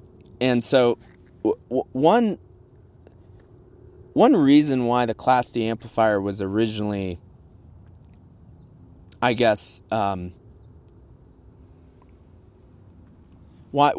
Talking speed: 75 wpm